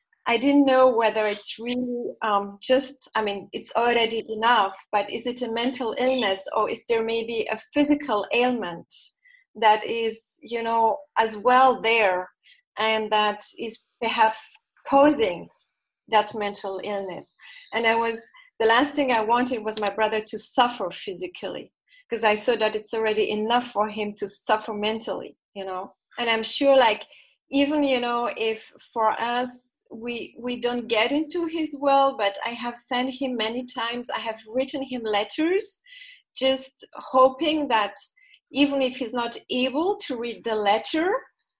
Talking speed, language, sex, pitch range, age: 160 wpm, English, female, 220-290 Hz, 30-49